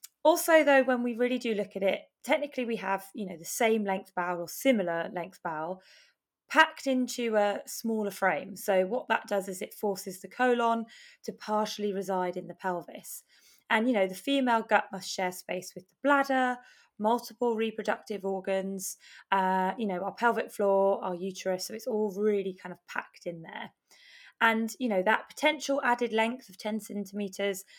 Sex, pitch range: female, 190-230 Hz